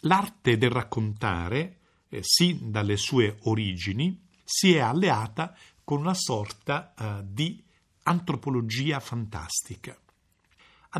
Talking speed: 105 wpm